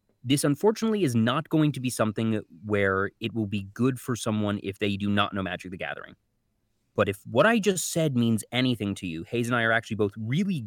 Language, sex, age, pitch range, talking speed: English, male, 20-39, 100-125 Hz, 225 wpm